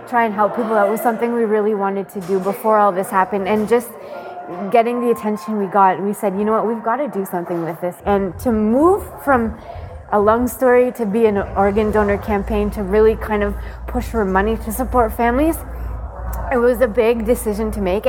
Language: English